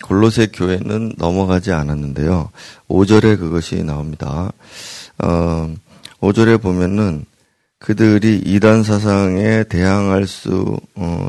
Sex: male